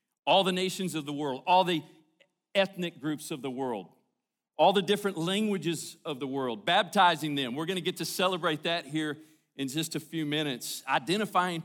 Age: 40-59